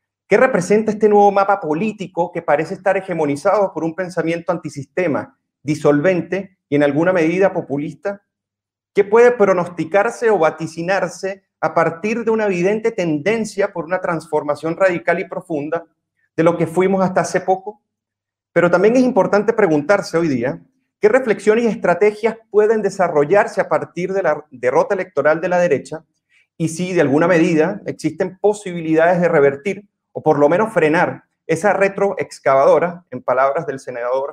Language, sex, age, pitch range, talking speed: Spanish, male, 40-59, 155-200 Hz, 150 wpm